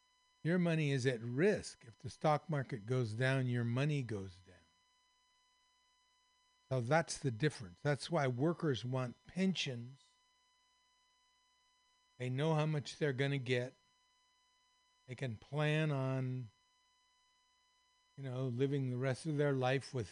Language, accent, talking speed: English, American, 135 wpm